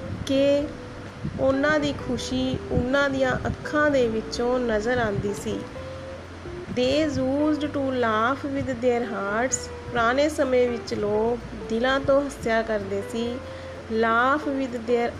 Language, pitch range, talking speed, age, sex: Punjabi, 225-275 Hz, 85 wpm, 30-49, female